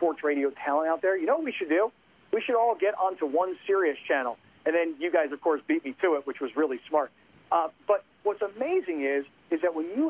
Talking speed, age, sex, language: 250 wpm, 40-59, male, English